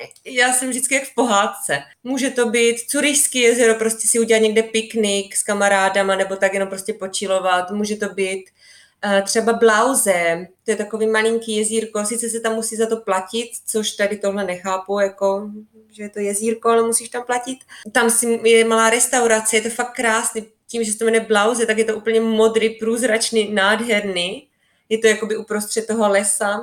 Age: 20-39